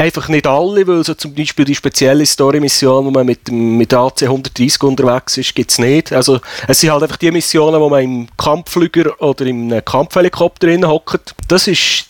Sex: male